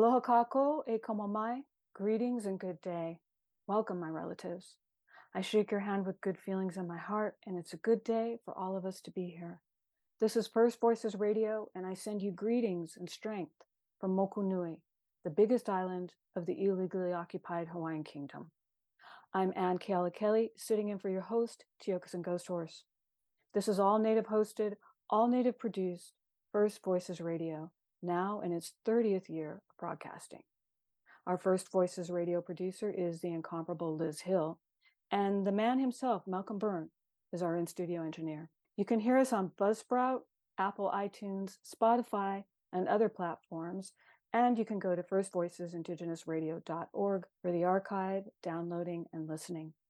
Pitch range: 175-215 Hz